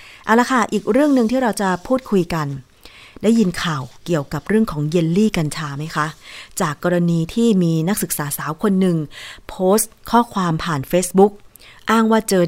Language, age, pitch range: Thai, 20-39, 155-210 Hz